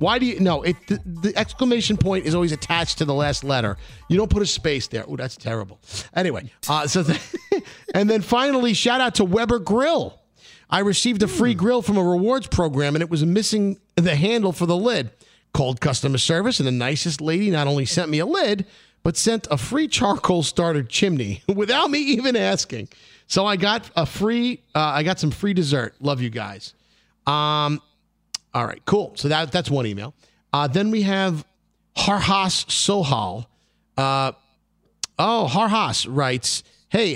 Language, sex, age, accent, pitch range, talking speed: English, male, 50-69, American, 145-210 Hz, 180 wpm